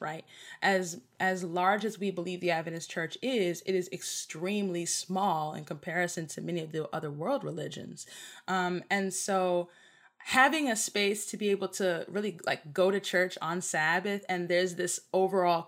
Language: English